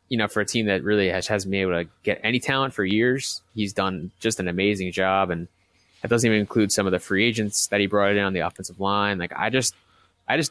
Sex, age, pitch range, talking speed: male, 20-39, 95-110 Hz, 265 wpm